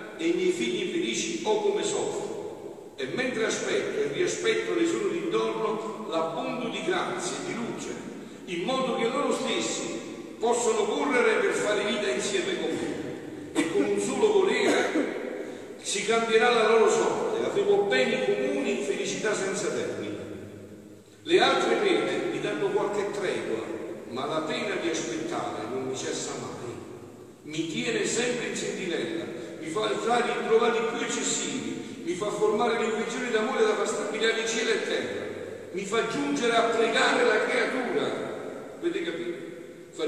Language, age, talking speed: Italian, 50-69, 155 wpm